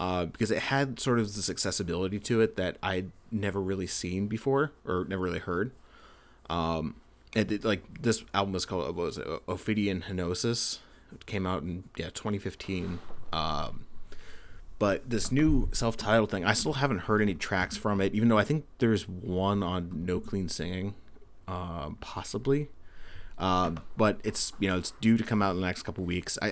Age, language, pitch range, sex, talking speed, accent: 30-49, English, 90-105 Hz, male, 180 wpm, American